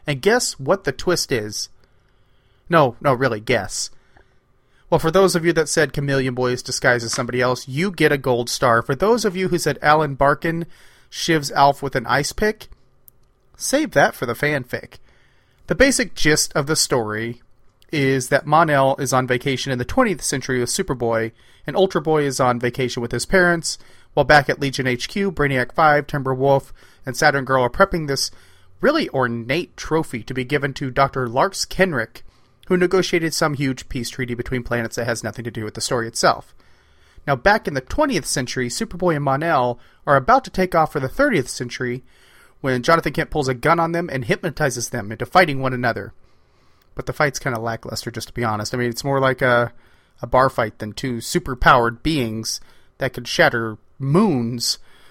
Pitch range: 120-155 Hz